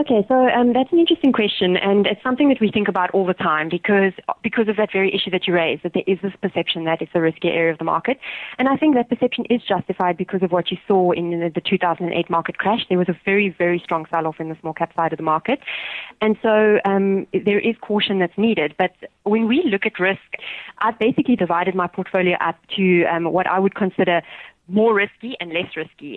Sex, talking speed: female, 235 wpm